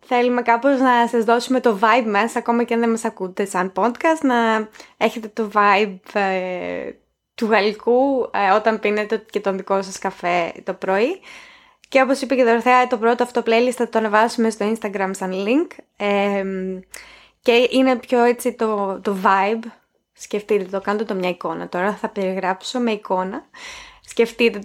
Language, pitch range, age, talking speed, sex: Greek, 205-260 Hz, 20-39, 165 wpm, female